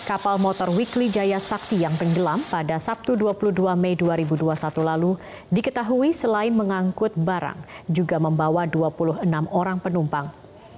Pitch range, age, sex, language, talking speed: 165-210 Hz, 30-49, female, Indonesian, 125 wpm